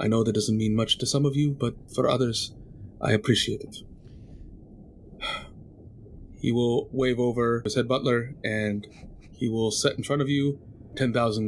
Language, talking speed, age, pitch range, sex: English, 165 wpm, 30-49, 105-130 Hz, male